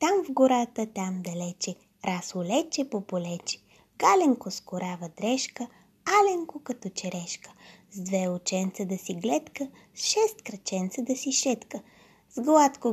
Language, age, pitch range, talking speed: Bulgarian, 20-39, 185-275 Hz, 135 wpm